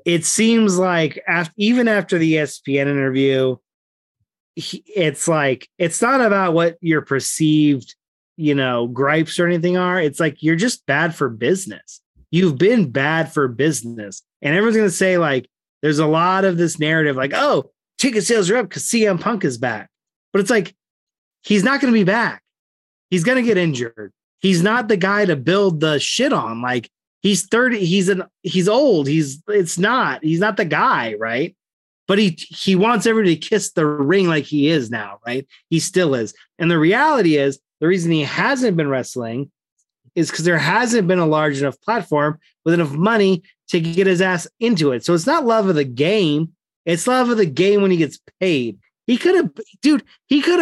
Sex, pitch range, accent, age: male, 150-215 Hz, American, 30-49